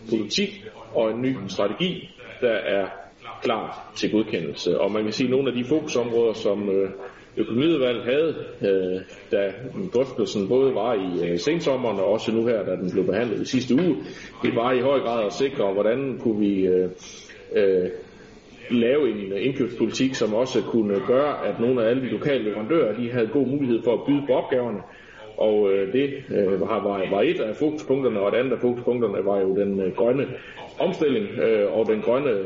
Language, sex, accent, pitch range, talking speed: Danish, male, native, 100-140 Hz, 190 wpm